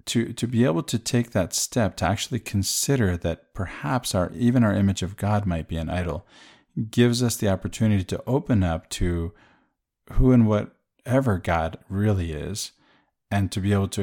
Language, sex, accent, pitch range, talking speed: English, male, American, 90-115 Hz, 180 wpm